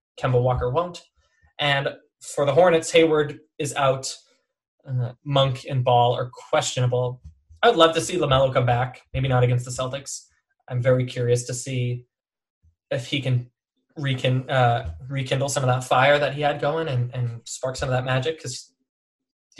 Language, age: English, 20-39